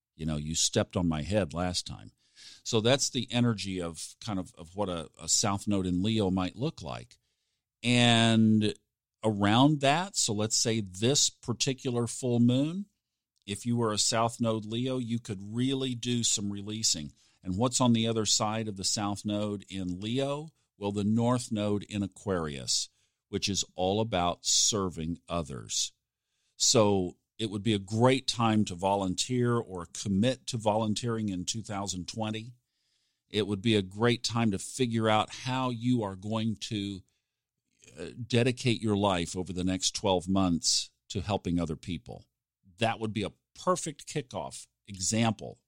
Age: 50-69